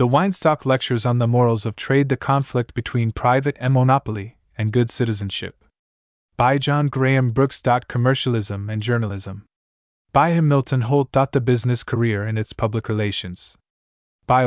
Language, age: English, 20-39